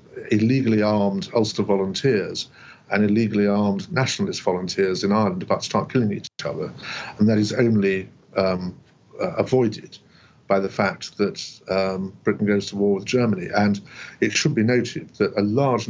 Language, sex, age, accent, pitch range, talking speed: English, male, 50-69, British, 100-120 Hz, 160 wpm